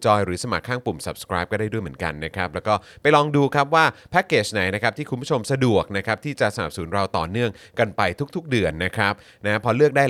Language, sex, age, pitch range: Thai, male, 30-49, 95-125 Hz